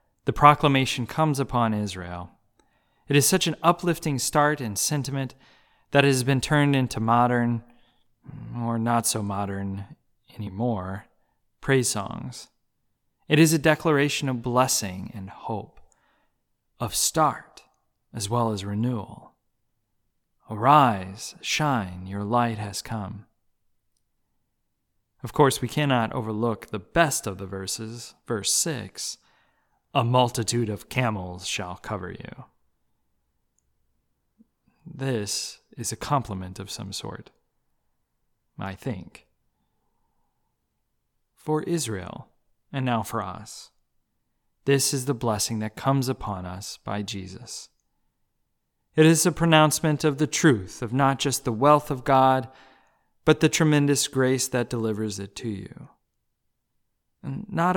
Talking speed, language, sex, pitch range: 120 wpm, English, male, 105-140 Hz